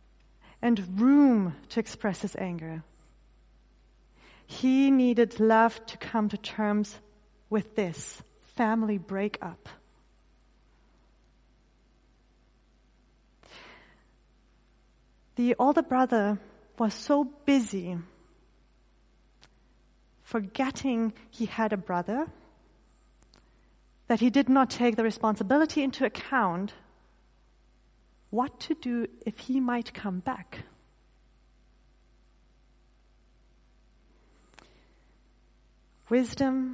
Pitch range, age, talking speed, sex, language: 195-245 Hz, 30-49, 75 wpm, female, English